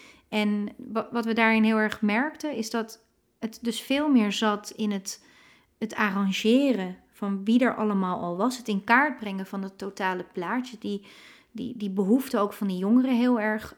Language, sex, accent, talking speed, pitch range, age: Dutch, female, Dutch, 185 wpm, 205-240 Hz, 30-49